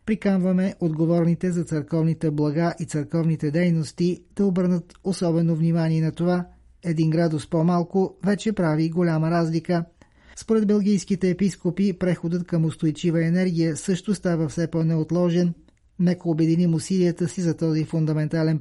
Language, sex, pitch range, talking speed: Bulgarian, male, 160-180 Hz, 125 wpm